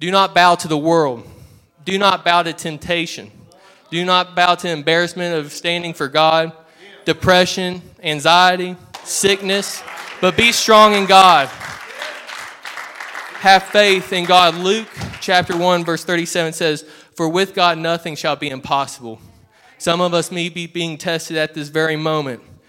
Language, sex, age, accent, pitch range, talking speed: English, male, 20-39, American, 150-185 Hz, 150 wpm